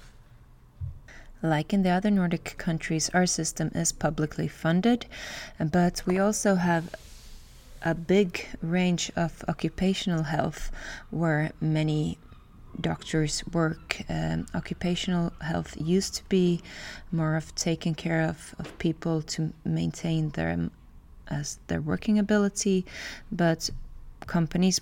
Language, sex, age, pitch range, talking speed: Finnish, female, 20-39, 145-170 Hz, 115 wpm